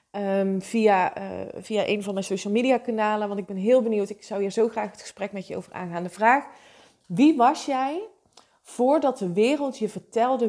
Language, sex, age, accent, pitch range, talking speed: Dutch, female, 20-39, Dutch, 205-270 Hz, 195 wpm